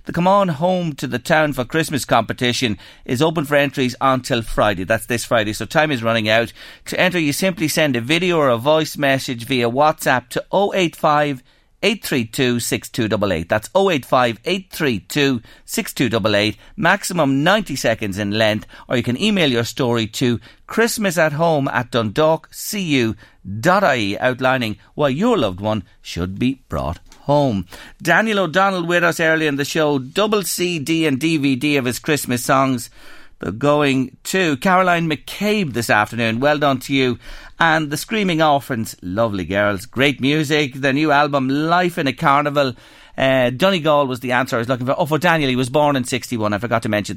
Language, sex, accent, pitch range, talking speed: English, male, Irish, 115-155 Hz, 170 wpm